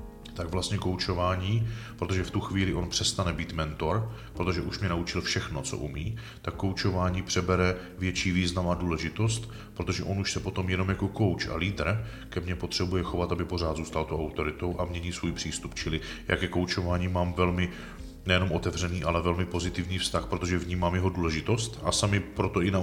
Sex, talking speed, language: male, 180 wpm, Czech